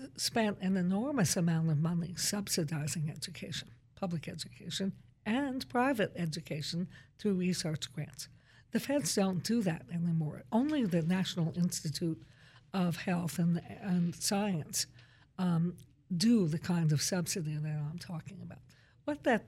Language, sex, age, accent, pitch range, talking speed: English, female, 60-79, American, 155-195 Hz, 130 wpm